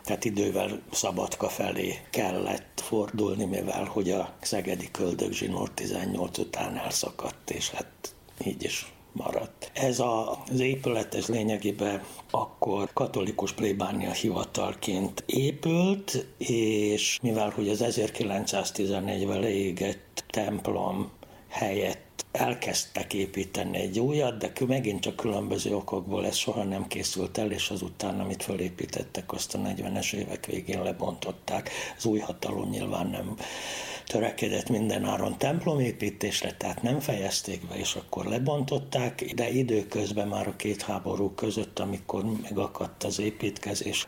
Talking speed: 120 wpm